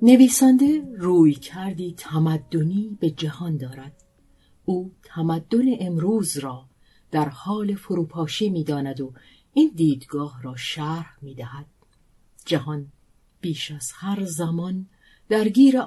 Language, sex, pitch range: Persian, female, 145-200 Hz